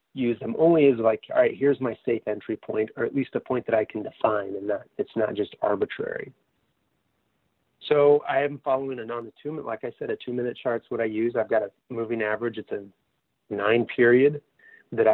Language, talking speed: English, 210 wpm